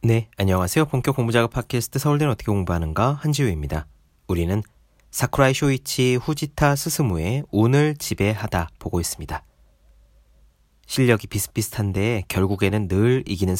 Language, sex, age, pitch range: Korean, male, 40-59, 85-135 Hz